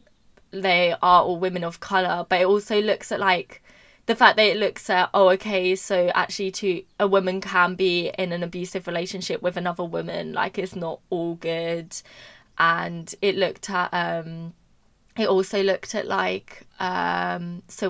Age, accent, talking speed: 20-39, British, 170 wpm